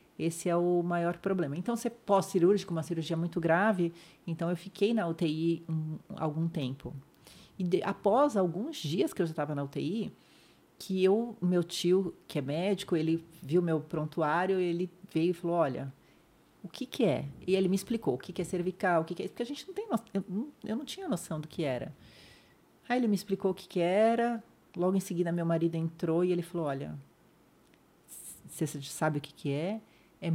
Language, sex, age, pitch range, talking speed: Portuguese, female, 40-59, 160-190 Hz, 205 wpm